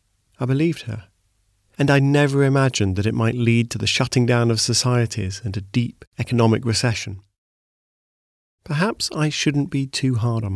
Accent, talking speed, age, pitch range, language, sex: British, 165 wpm, 40-59, 105-140 Hz, English, male